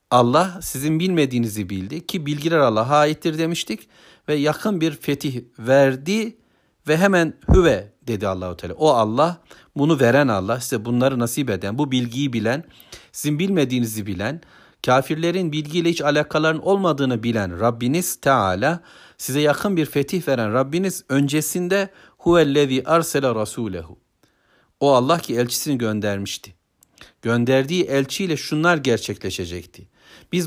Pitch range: 120-160 Hz